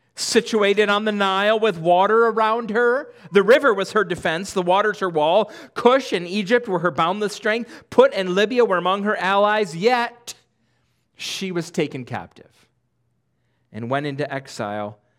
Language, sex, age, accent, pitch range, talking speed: English, male, 40-59, American, 145-230 Hz, 160 wpm